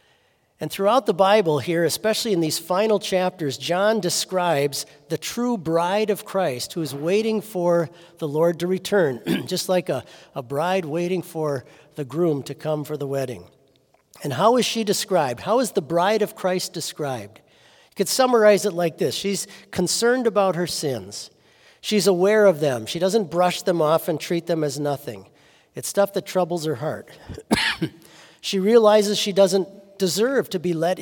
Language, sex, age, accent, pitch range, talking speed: English, male, 50-69, American, 145-195 Hz, 175 wpm